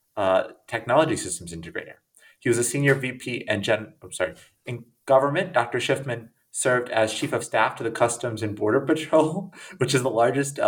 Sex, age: male, 30-49